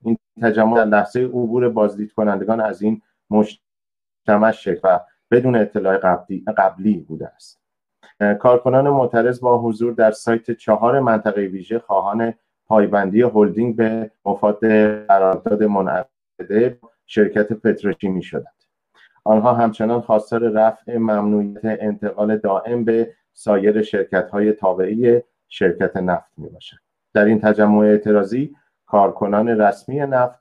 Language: Persian